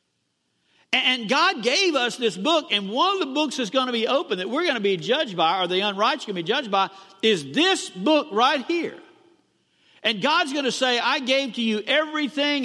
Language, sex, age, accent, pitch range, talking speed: English, male, 50-69, American, 205-285 Hz, 220 wpm